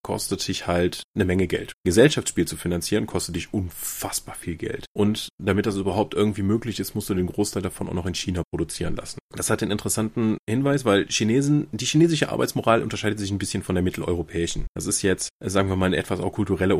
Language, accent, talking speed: German, German, 210 wpm